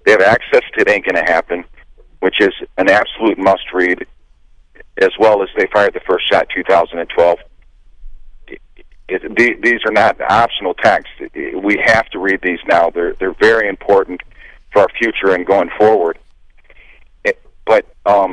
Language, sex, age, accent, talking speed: English, male, 50-69, American, 165 wpm